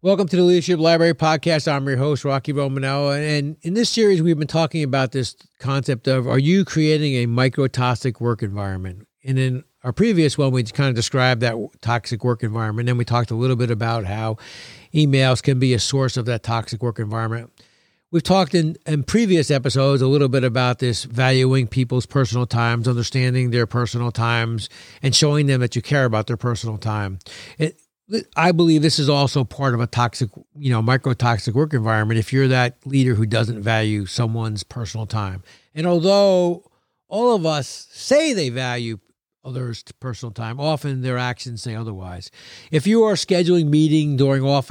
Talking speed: 185 wpm